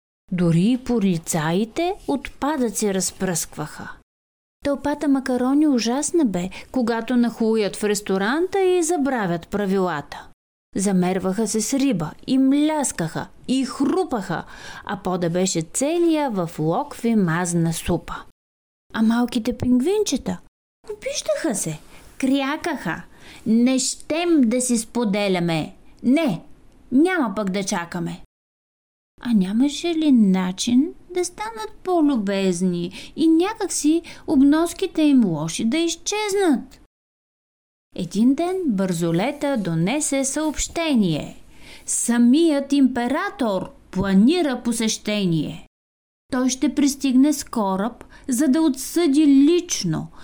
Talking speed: 95 wpm